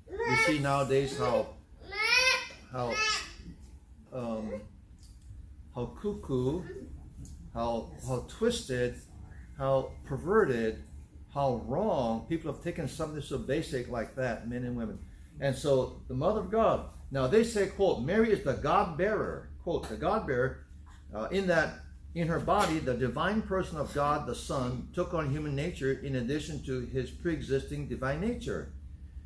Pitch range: 110-170 Hz